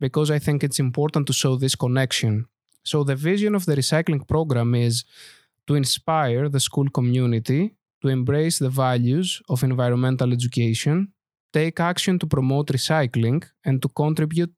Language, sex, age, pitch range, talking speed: English, male, 20-39, 130-155 Hz, 150 wpm